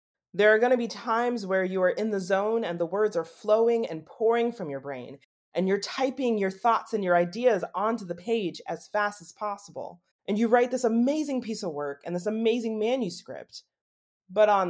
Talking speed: 210 wpm